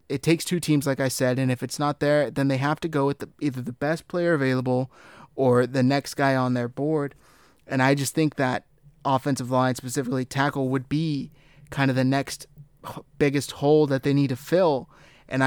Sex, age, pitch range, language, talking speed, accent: male, 20-39, 130-145 Hz, English, 210 wpm, American